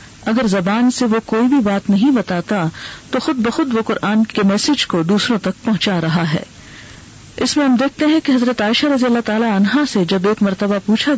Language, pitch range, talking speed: Urdu, 195-255 Hz, 210 wpm